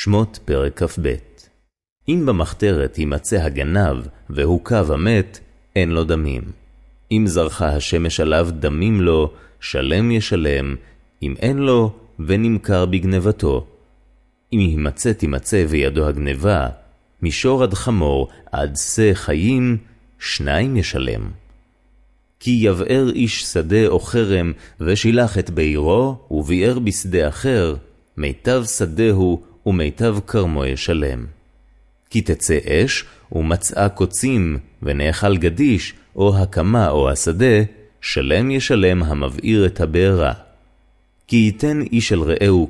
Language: Hebrew